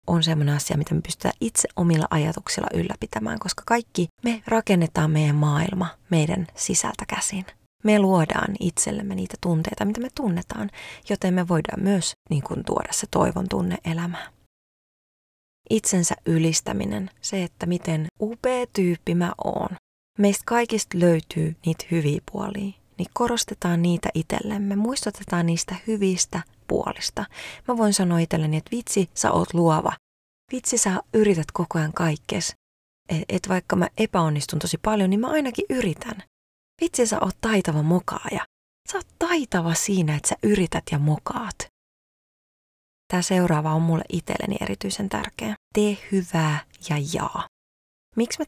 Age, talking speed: 30-49, 140 wpm